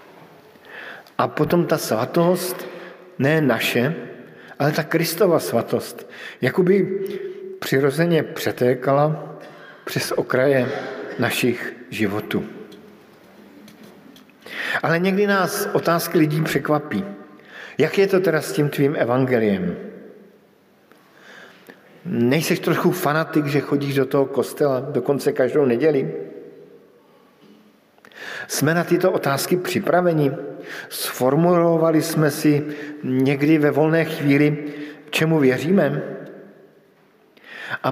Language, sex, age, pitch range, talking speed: Slovak, male, 50-69, 135-170 Hz, 90 wpm